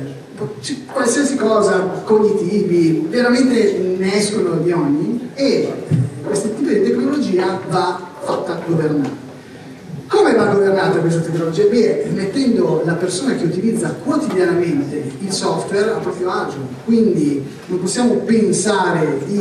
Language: Italian